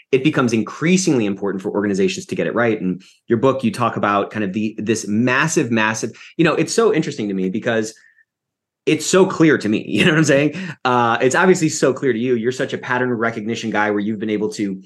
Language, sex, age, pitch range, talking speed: English, male, 30-49, 105-125 Hz, 235 wpm